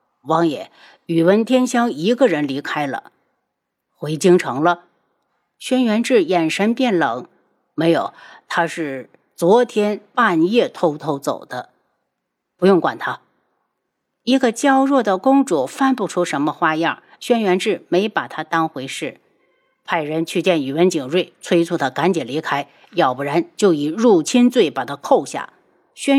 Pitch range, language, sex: 165-245 Hz, Chinese, female